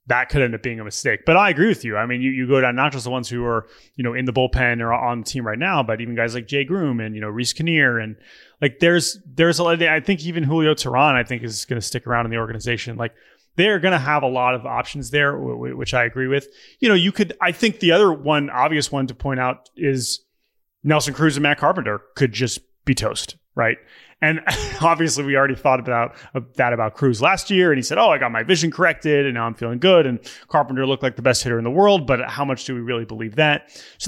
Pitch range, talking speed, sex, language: 120-155 Hz, 265 wpm, male, English